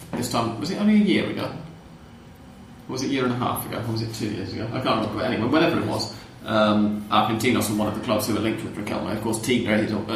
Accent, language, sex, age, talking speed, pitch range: British, English, male, 30-49, 280 wpm, 105-115 Hz